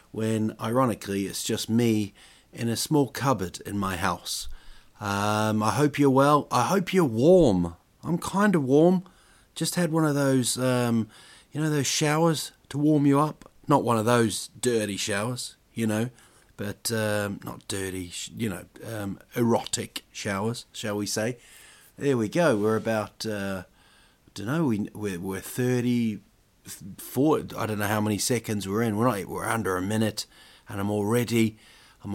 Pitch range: 100-120 Hz